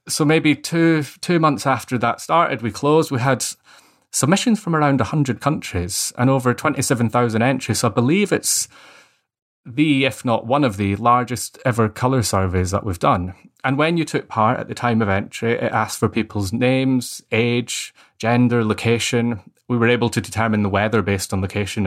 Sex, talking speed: male, 180 wpm